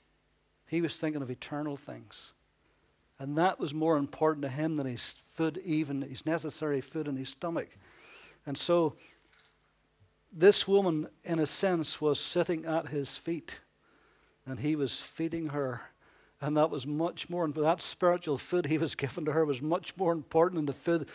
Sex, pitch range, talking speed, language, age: male, 150-175 Hz, 170 wpm, English, 60-79